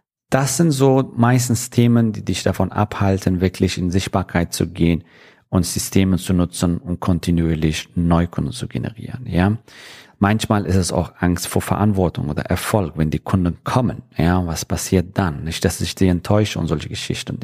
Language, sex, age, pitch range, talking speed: German, male, 40-59, 85-110 Hz, 170 wpm